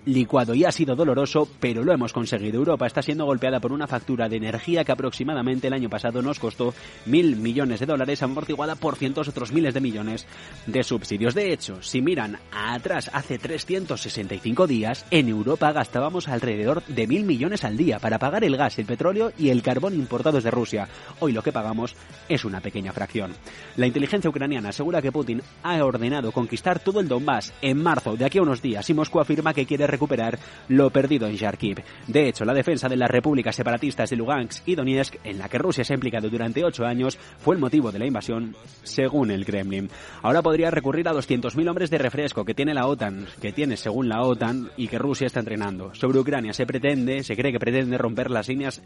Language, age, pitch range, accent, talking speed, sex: Spanish, 20-39, 115-145 Hz, Spanish, 205 wpm, male